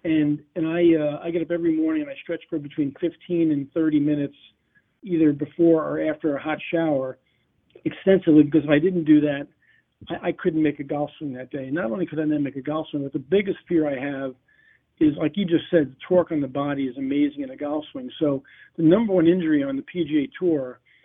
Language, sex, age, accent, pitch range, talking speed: English, male, 40-59, American, 145-175 Hz, 230 wpm